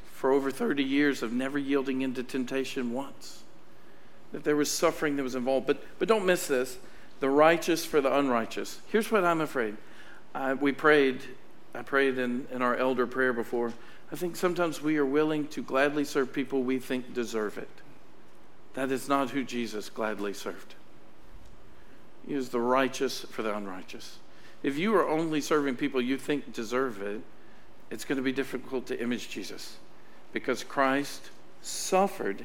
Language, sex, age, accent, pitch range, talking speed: English, male, 50-69, American, 125-150 Hz, 170 wpm